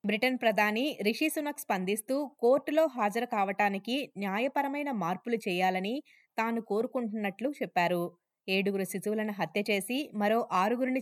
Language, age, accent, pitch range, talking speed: Telugu, 20-39, native, 195-250 Hz, 110 wpm